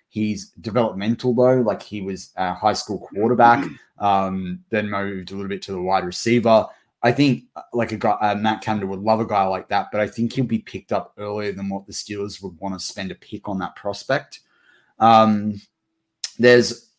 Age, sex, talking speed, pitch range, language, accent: 20-39, male, 200 wpm, 100-120 Hz, English, Australian